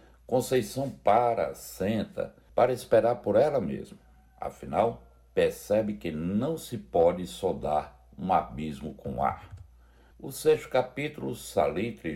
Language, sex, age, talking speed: Portuguese, male, 60-79, 115 wpm